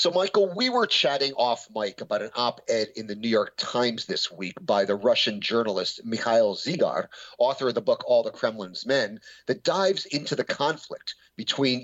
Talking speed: 195 wpm